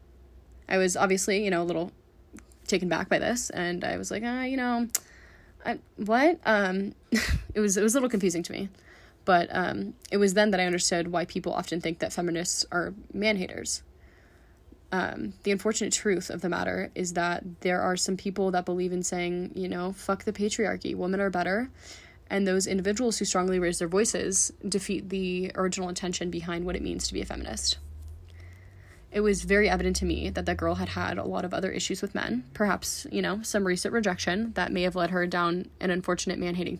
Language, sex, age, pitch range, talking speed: English, female, 10-29, 165-195 Hz, 205 wpm